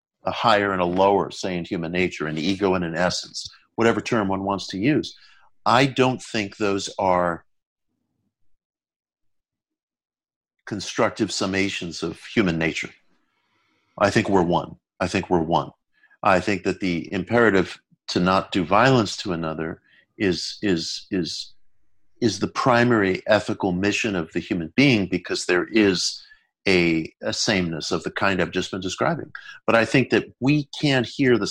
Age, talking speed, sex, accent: 50-69, 155 wpm, male, American